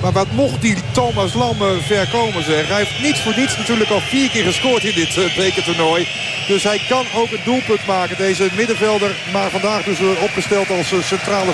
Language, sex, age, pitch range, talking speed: Dutch, male, 50-69, 160-205 Hz, 185 wpm